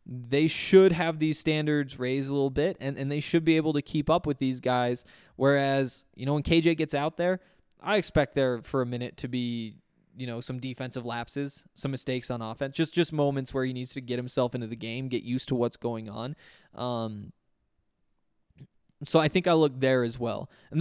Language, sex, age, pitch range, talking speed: English, male, 20-39, 125-150 Hz, 215 wpm